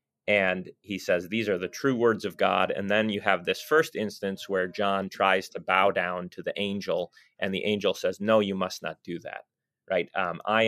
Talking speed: 220 wpm